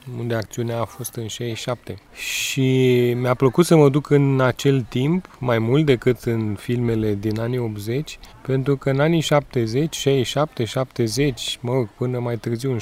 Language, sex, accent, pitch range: English, male, Romanian, 115-140 Hz